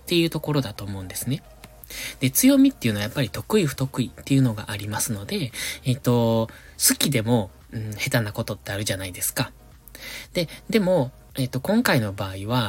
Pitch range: 115-160 Hz